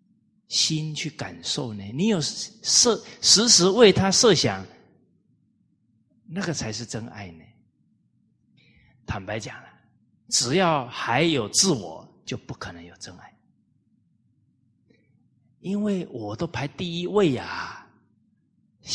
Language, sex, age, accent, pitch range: Chinese, male, 30-49, native, 105-140 Hz